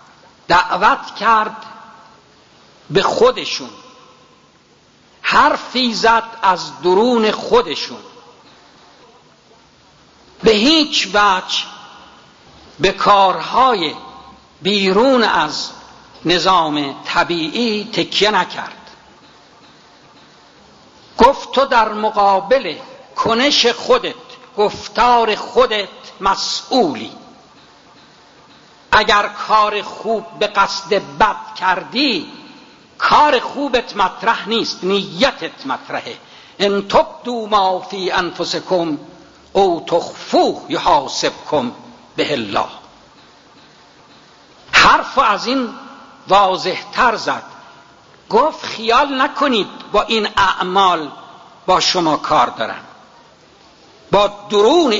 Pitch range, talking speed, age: 195-260 Hz, 75 wpm, 60-79